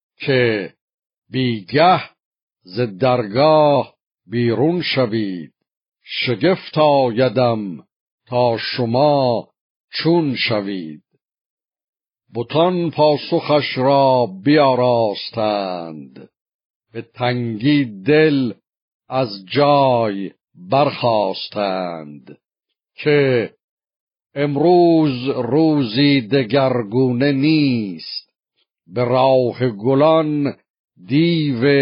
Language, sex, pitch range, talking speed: Persian, male, 115-145 Hz, 60 wpm